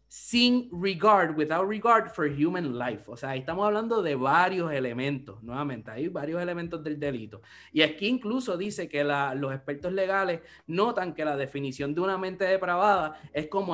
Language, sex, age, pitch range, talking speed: English, male, 20-39, 150-200 Hz, 175 wpm